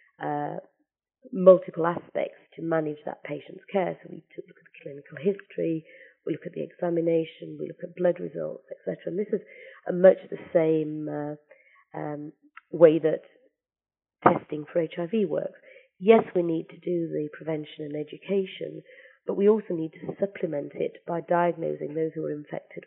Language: English